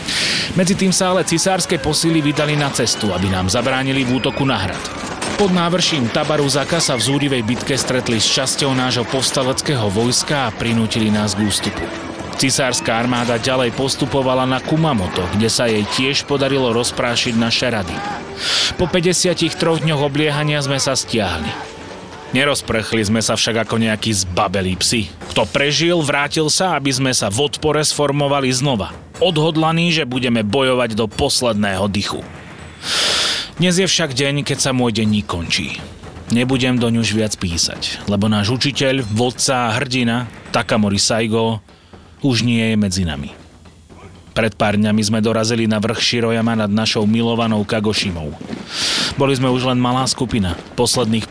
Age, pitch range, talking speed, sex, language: 30-49, 105-135 Hz, 150 wpm, male, Slovak